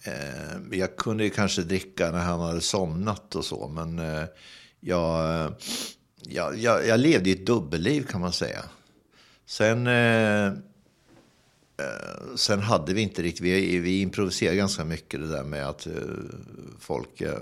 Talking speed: 125 wpm